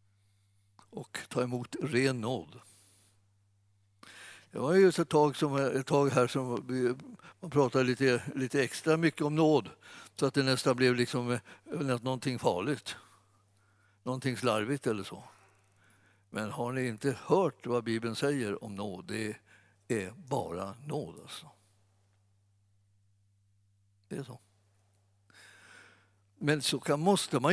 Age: 60-79